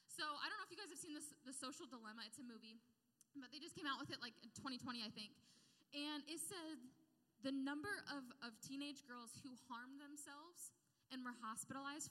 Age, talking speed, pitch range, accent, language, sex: 10-29, 215 wpm, 215-280 Hz, American, English, female